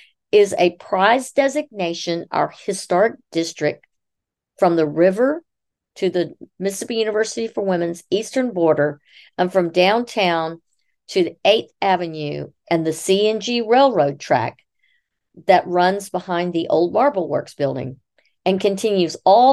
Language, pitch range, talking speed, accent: English, 160-225 Hz, 125 wpm, American